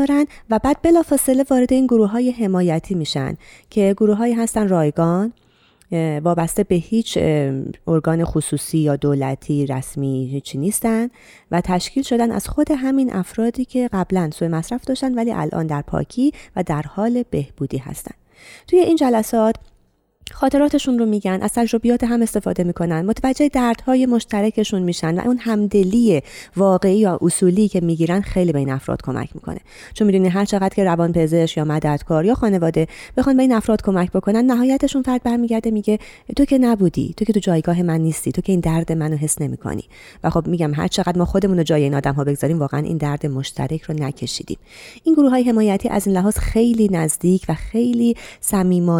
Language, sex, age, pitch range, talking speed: Persian, female, 30-49, 160-235 Hz, 170 wpm